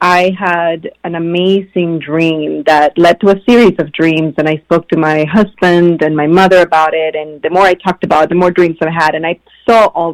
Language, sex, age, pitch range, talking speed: English, female, 30-49, 160-185 Hz, 230 wpm